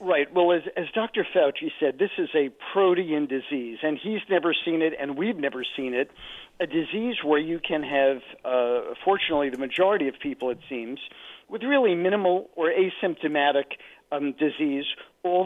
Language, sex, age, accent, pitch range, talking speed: English, male, 50-69, American, 140-185 Hz, 170 wpm